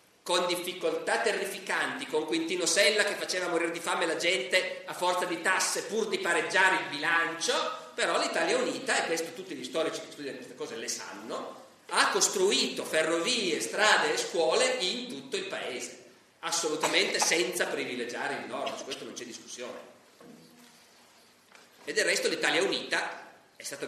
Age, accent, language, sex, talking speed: 40-59, native, Italian, male, 160 wpm